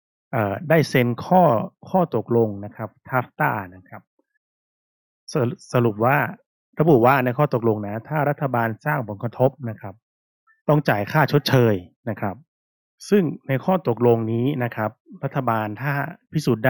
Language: Thai